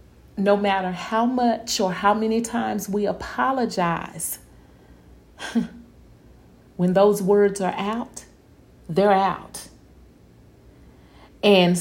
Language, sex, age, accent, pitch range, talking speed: English, female, 40-59, American, 175-210 Hz, 90 wpm